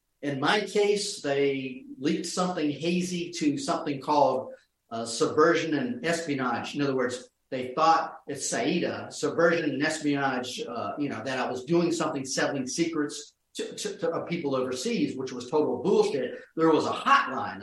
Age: 40-59